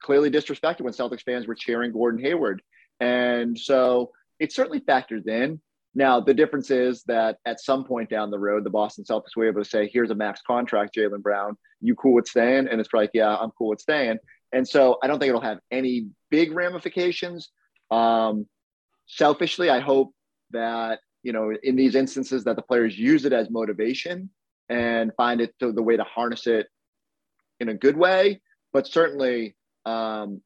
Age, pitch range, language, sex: 30-49, 110-150 Hz, English, male